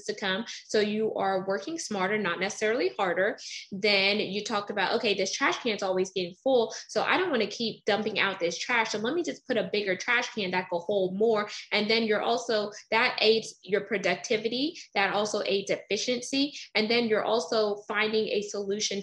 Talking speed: 200 wpm